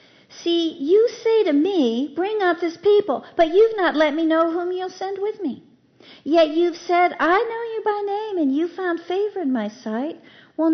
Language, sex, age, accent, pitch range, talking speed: English, female, 50-69, American, 235-355 Hz, 200 wpm